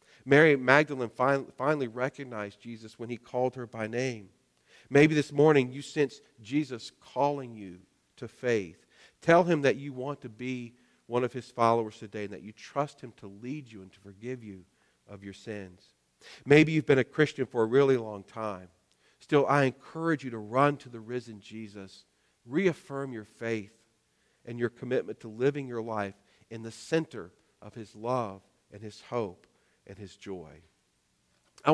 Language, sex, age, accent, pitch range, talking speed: English, male, 40-59, American, 110-140 Hz, 170 wpm